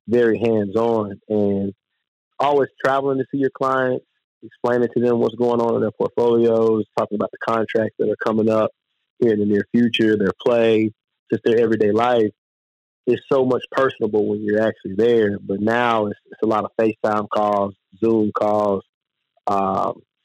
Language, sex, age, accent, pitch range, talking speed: English, male, 30-49, American, 100-120 Hz, 170 wpm